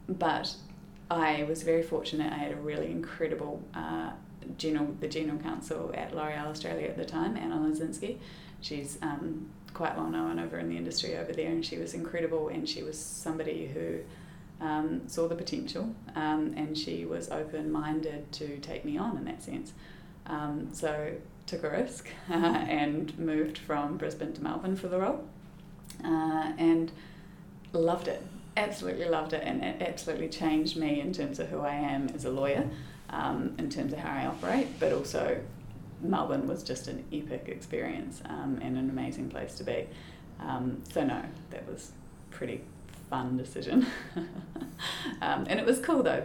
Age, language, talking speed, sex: 20-39, English, 170 wpm, female